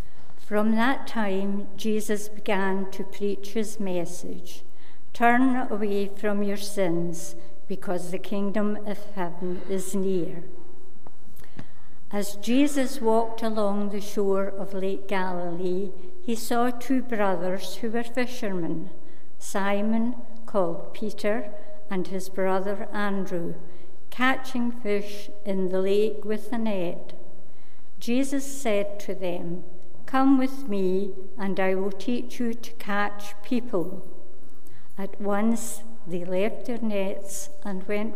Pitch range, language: 190-225 Hz, English